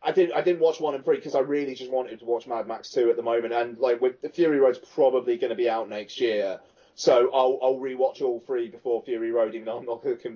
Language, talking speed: English, 265 wpm